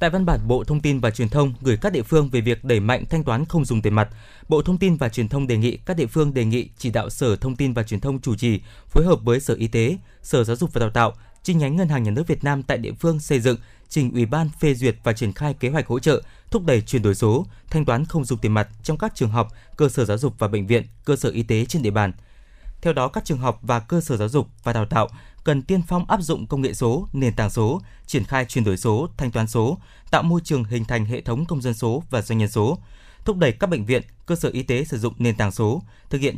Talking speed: 285 wpm